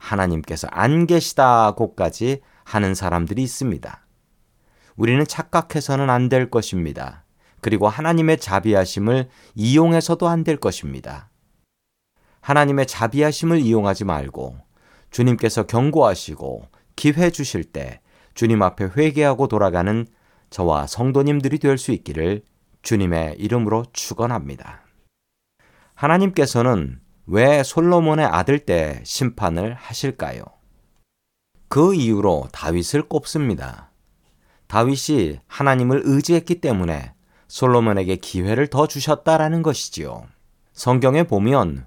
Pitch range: 95-145 Hz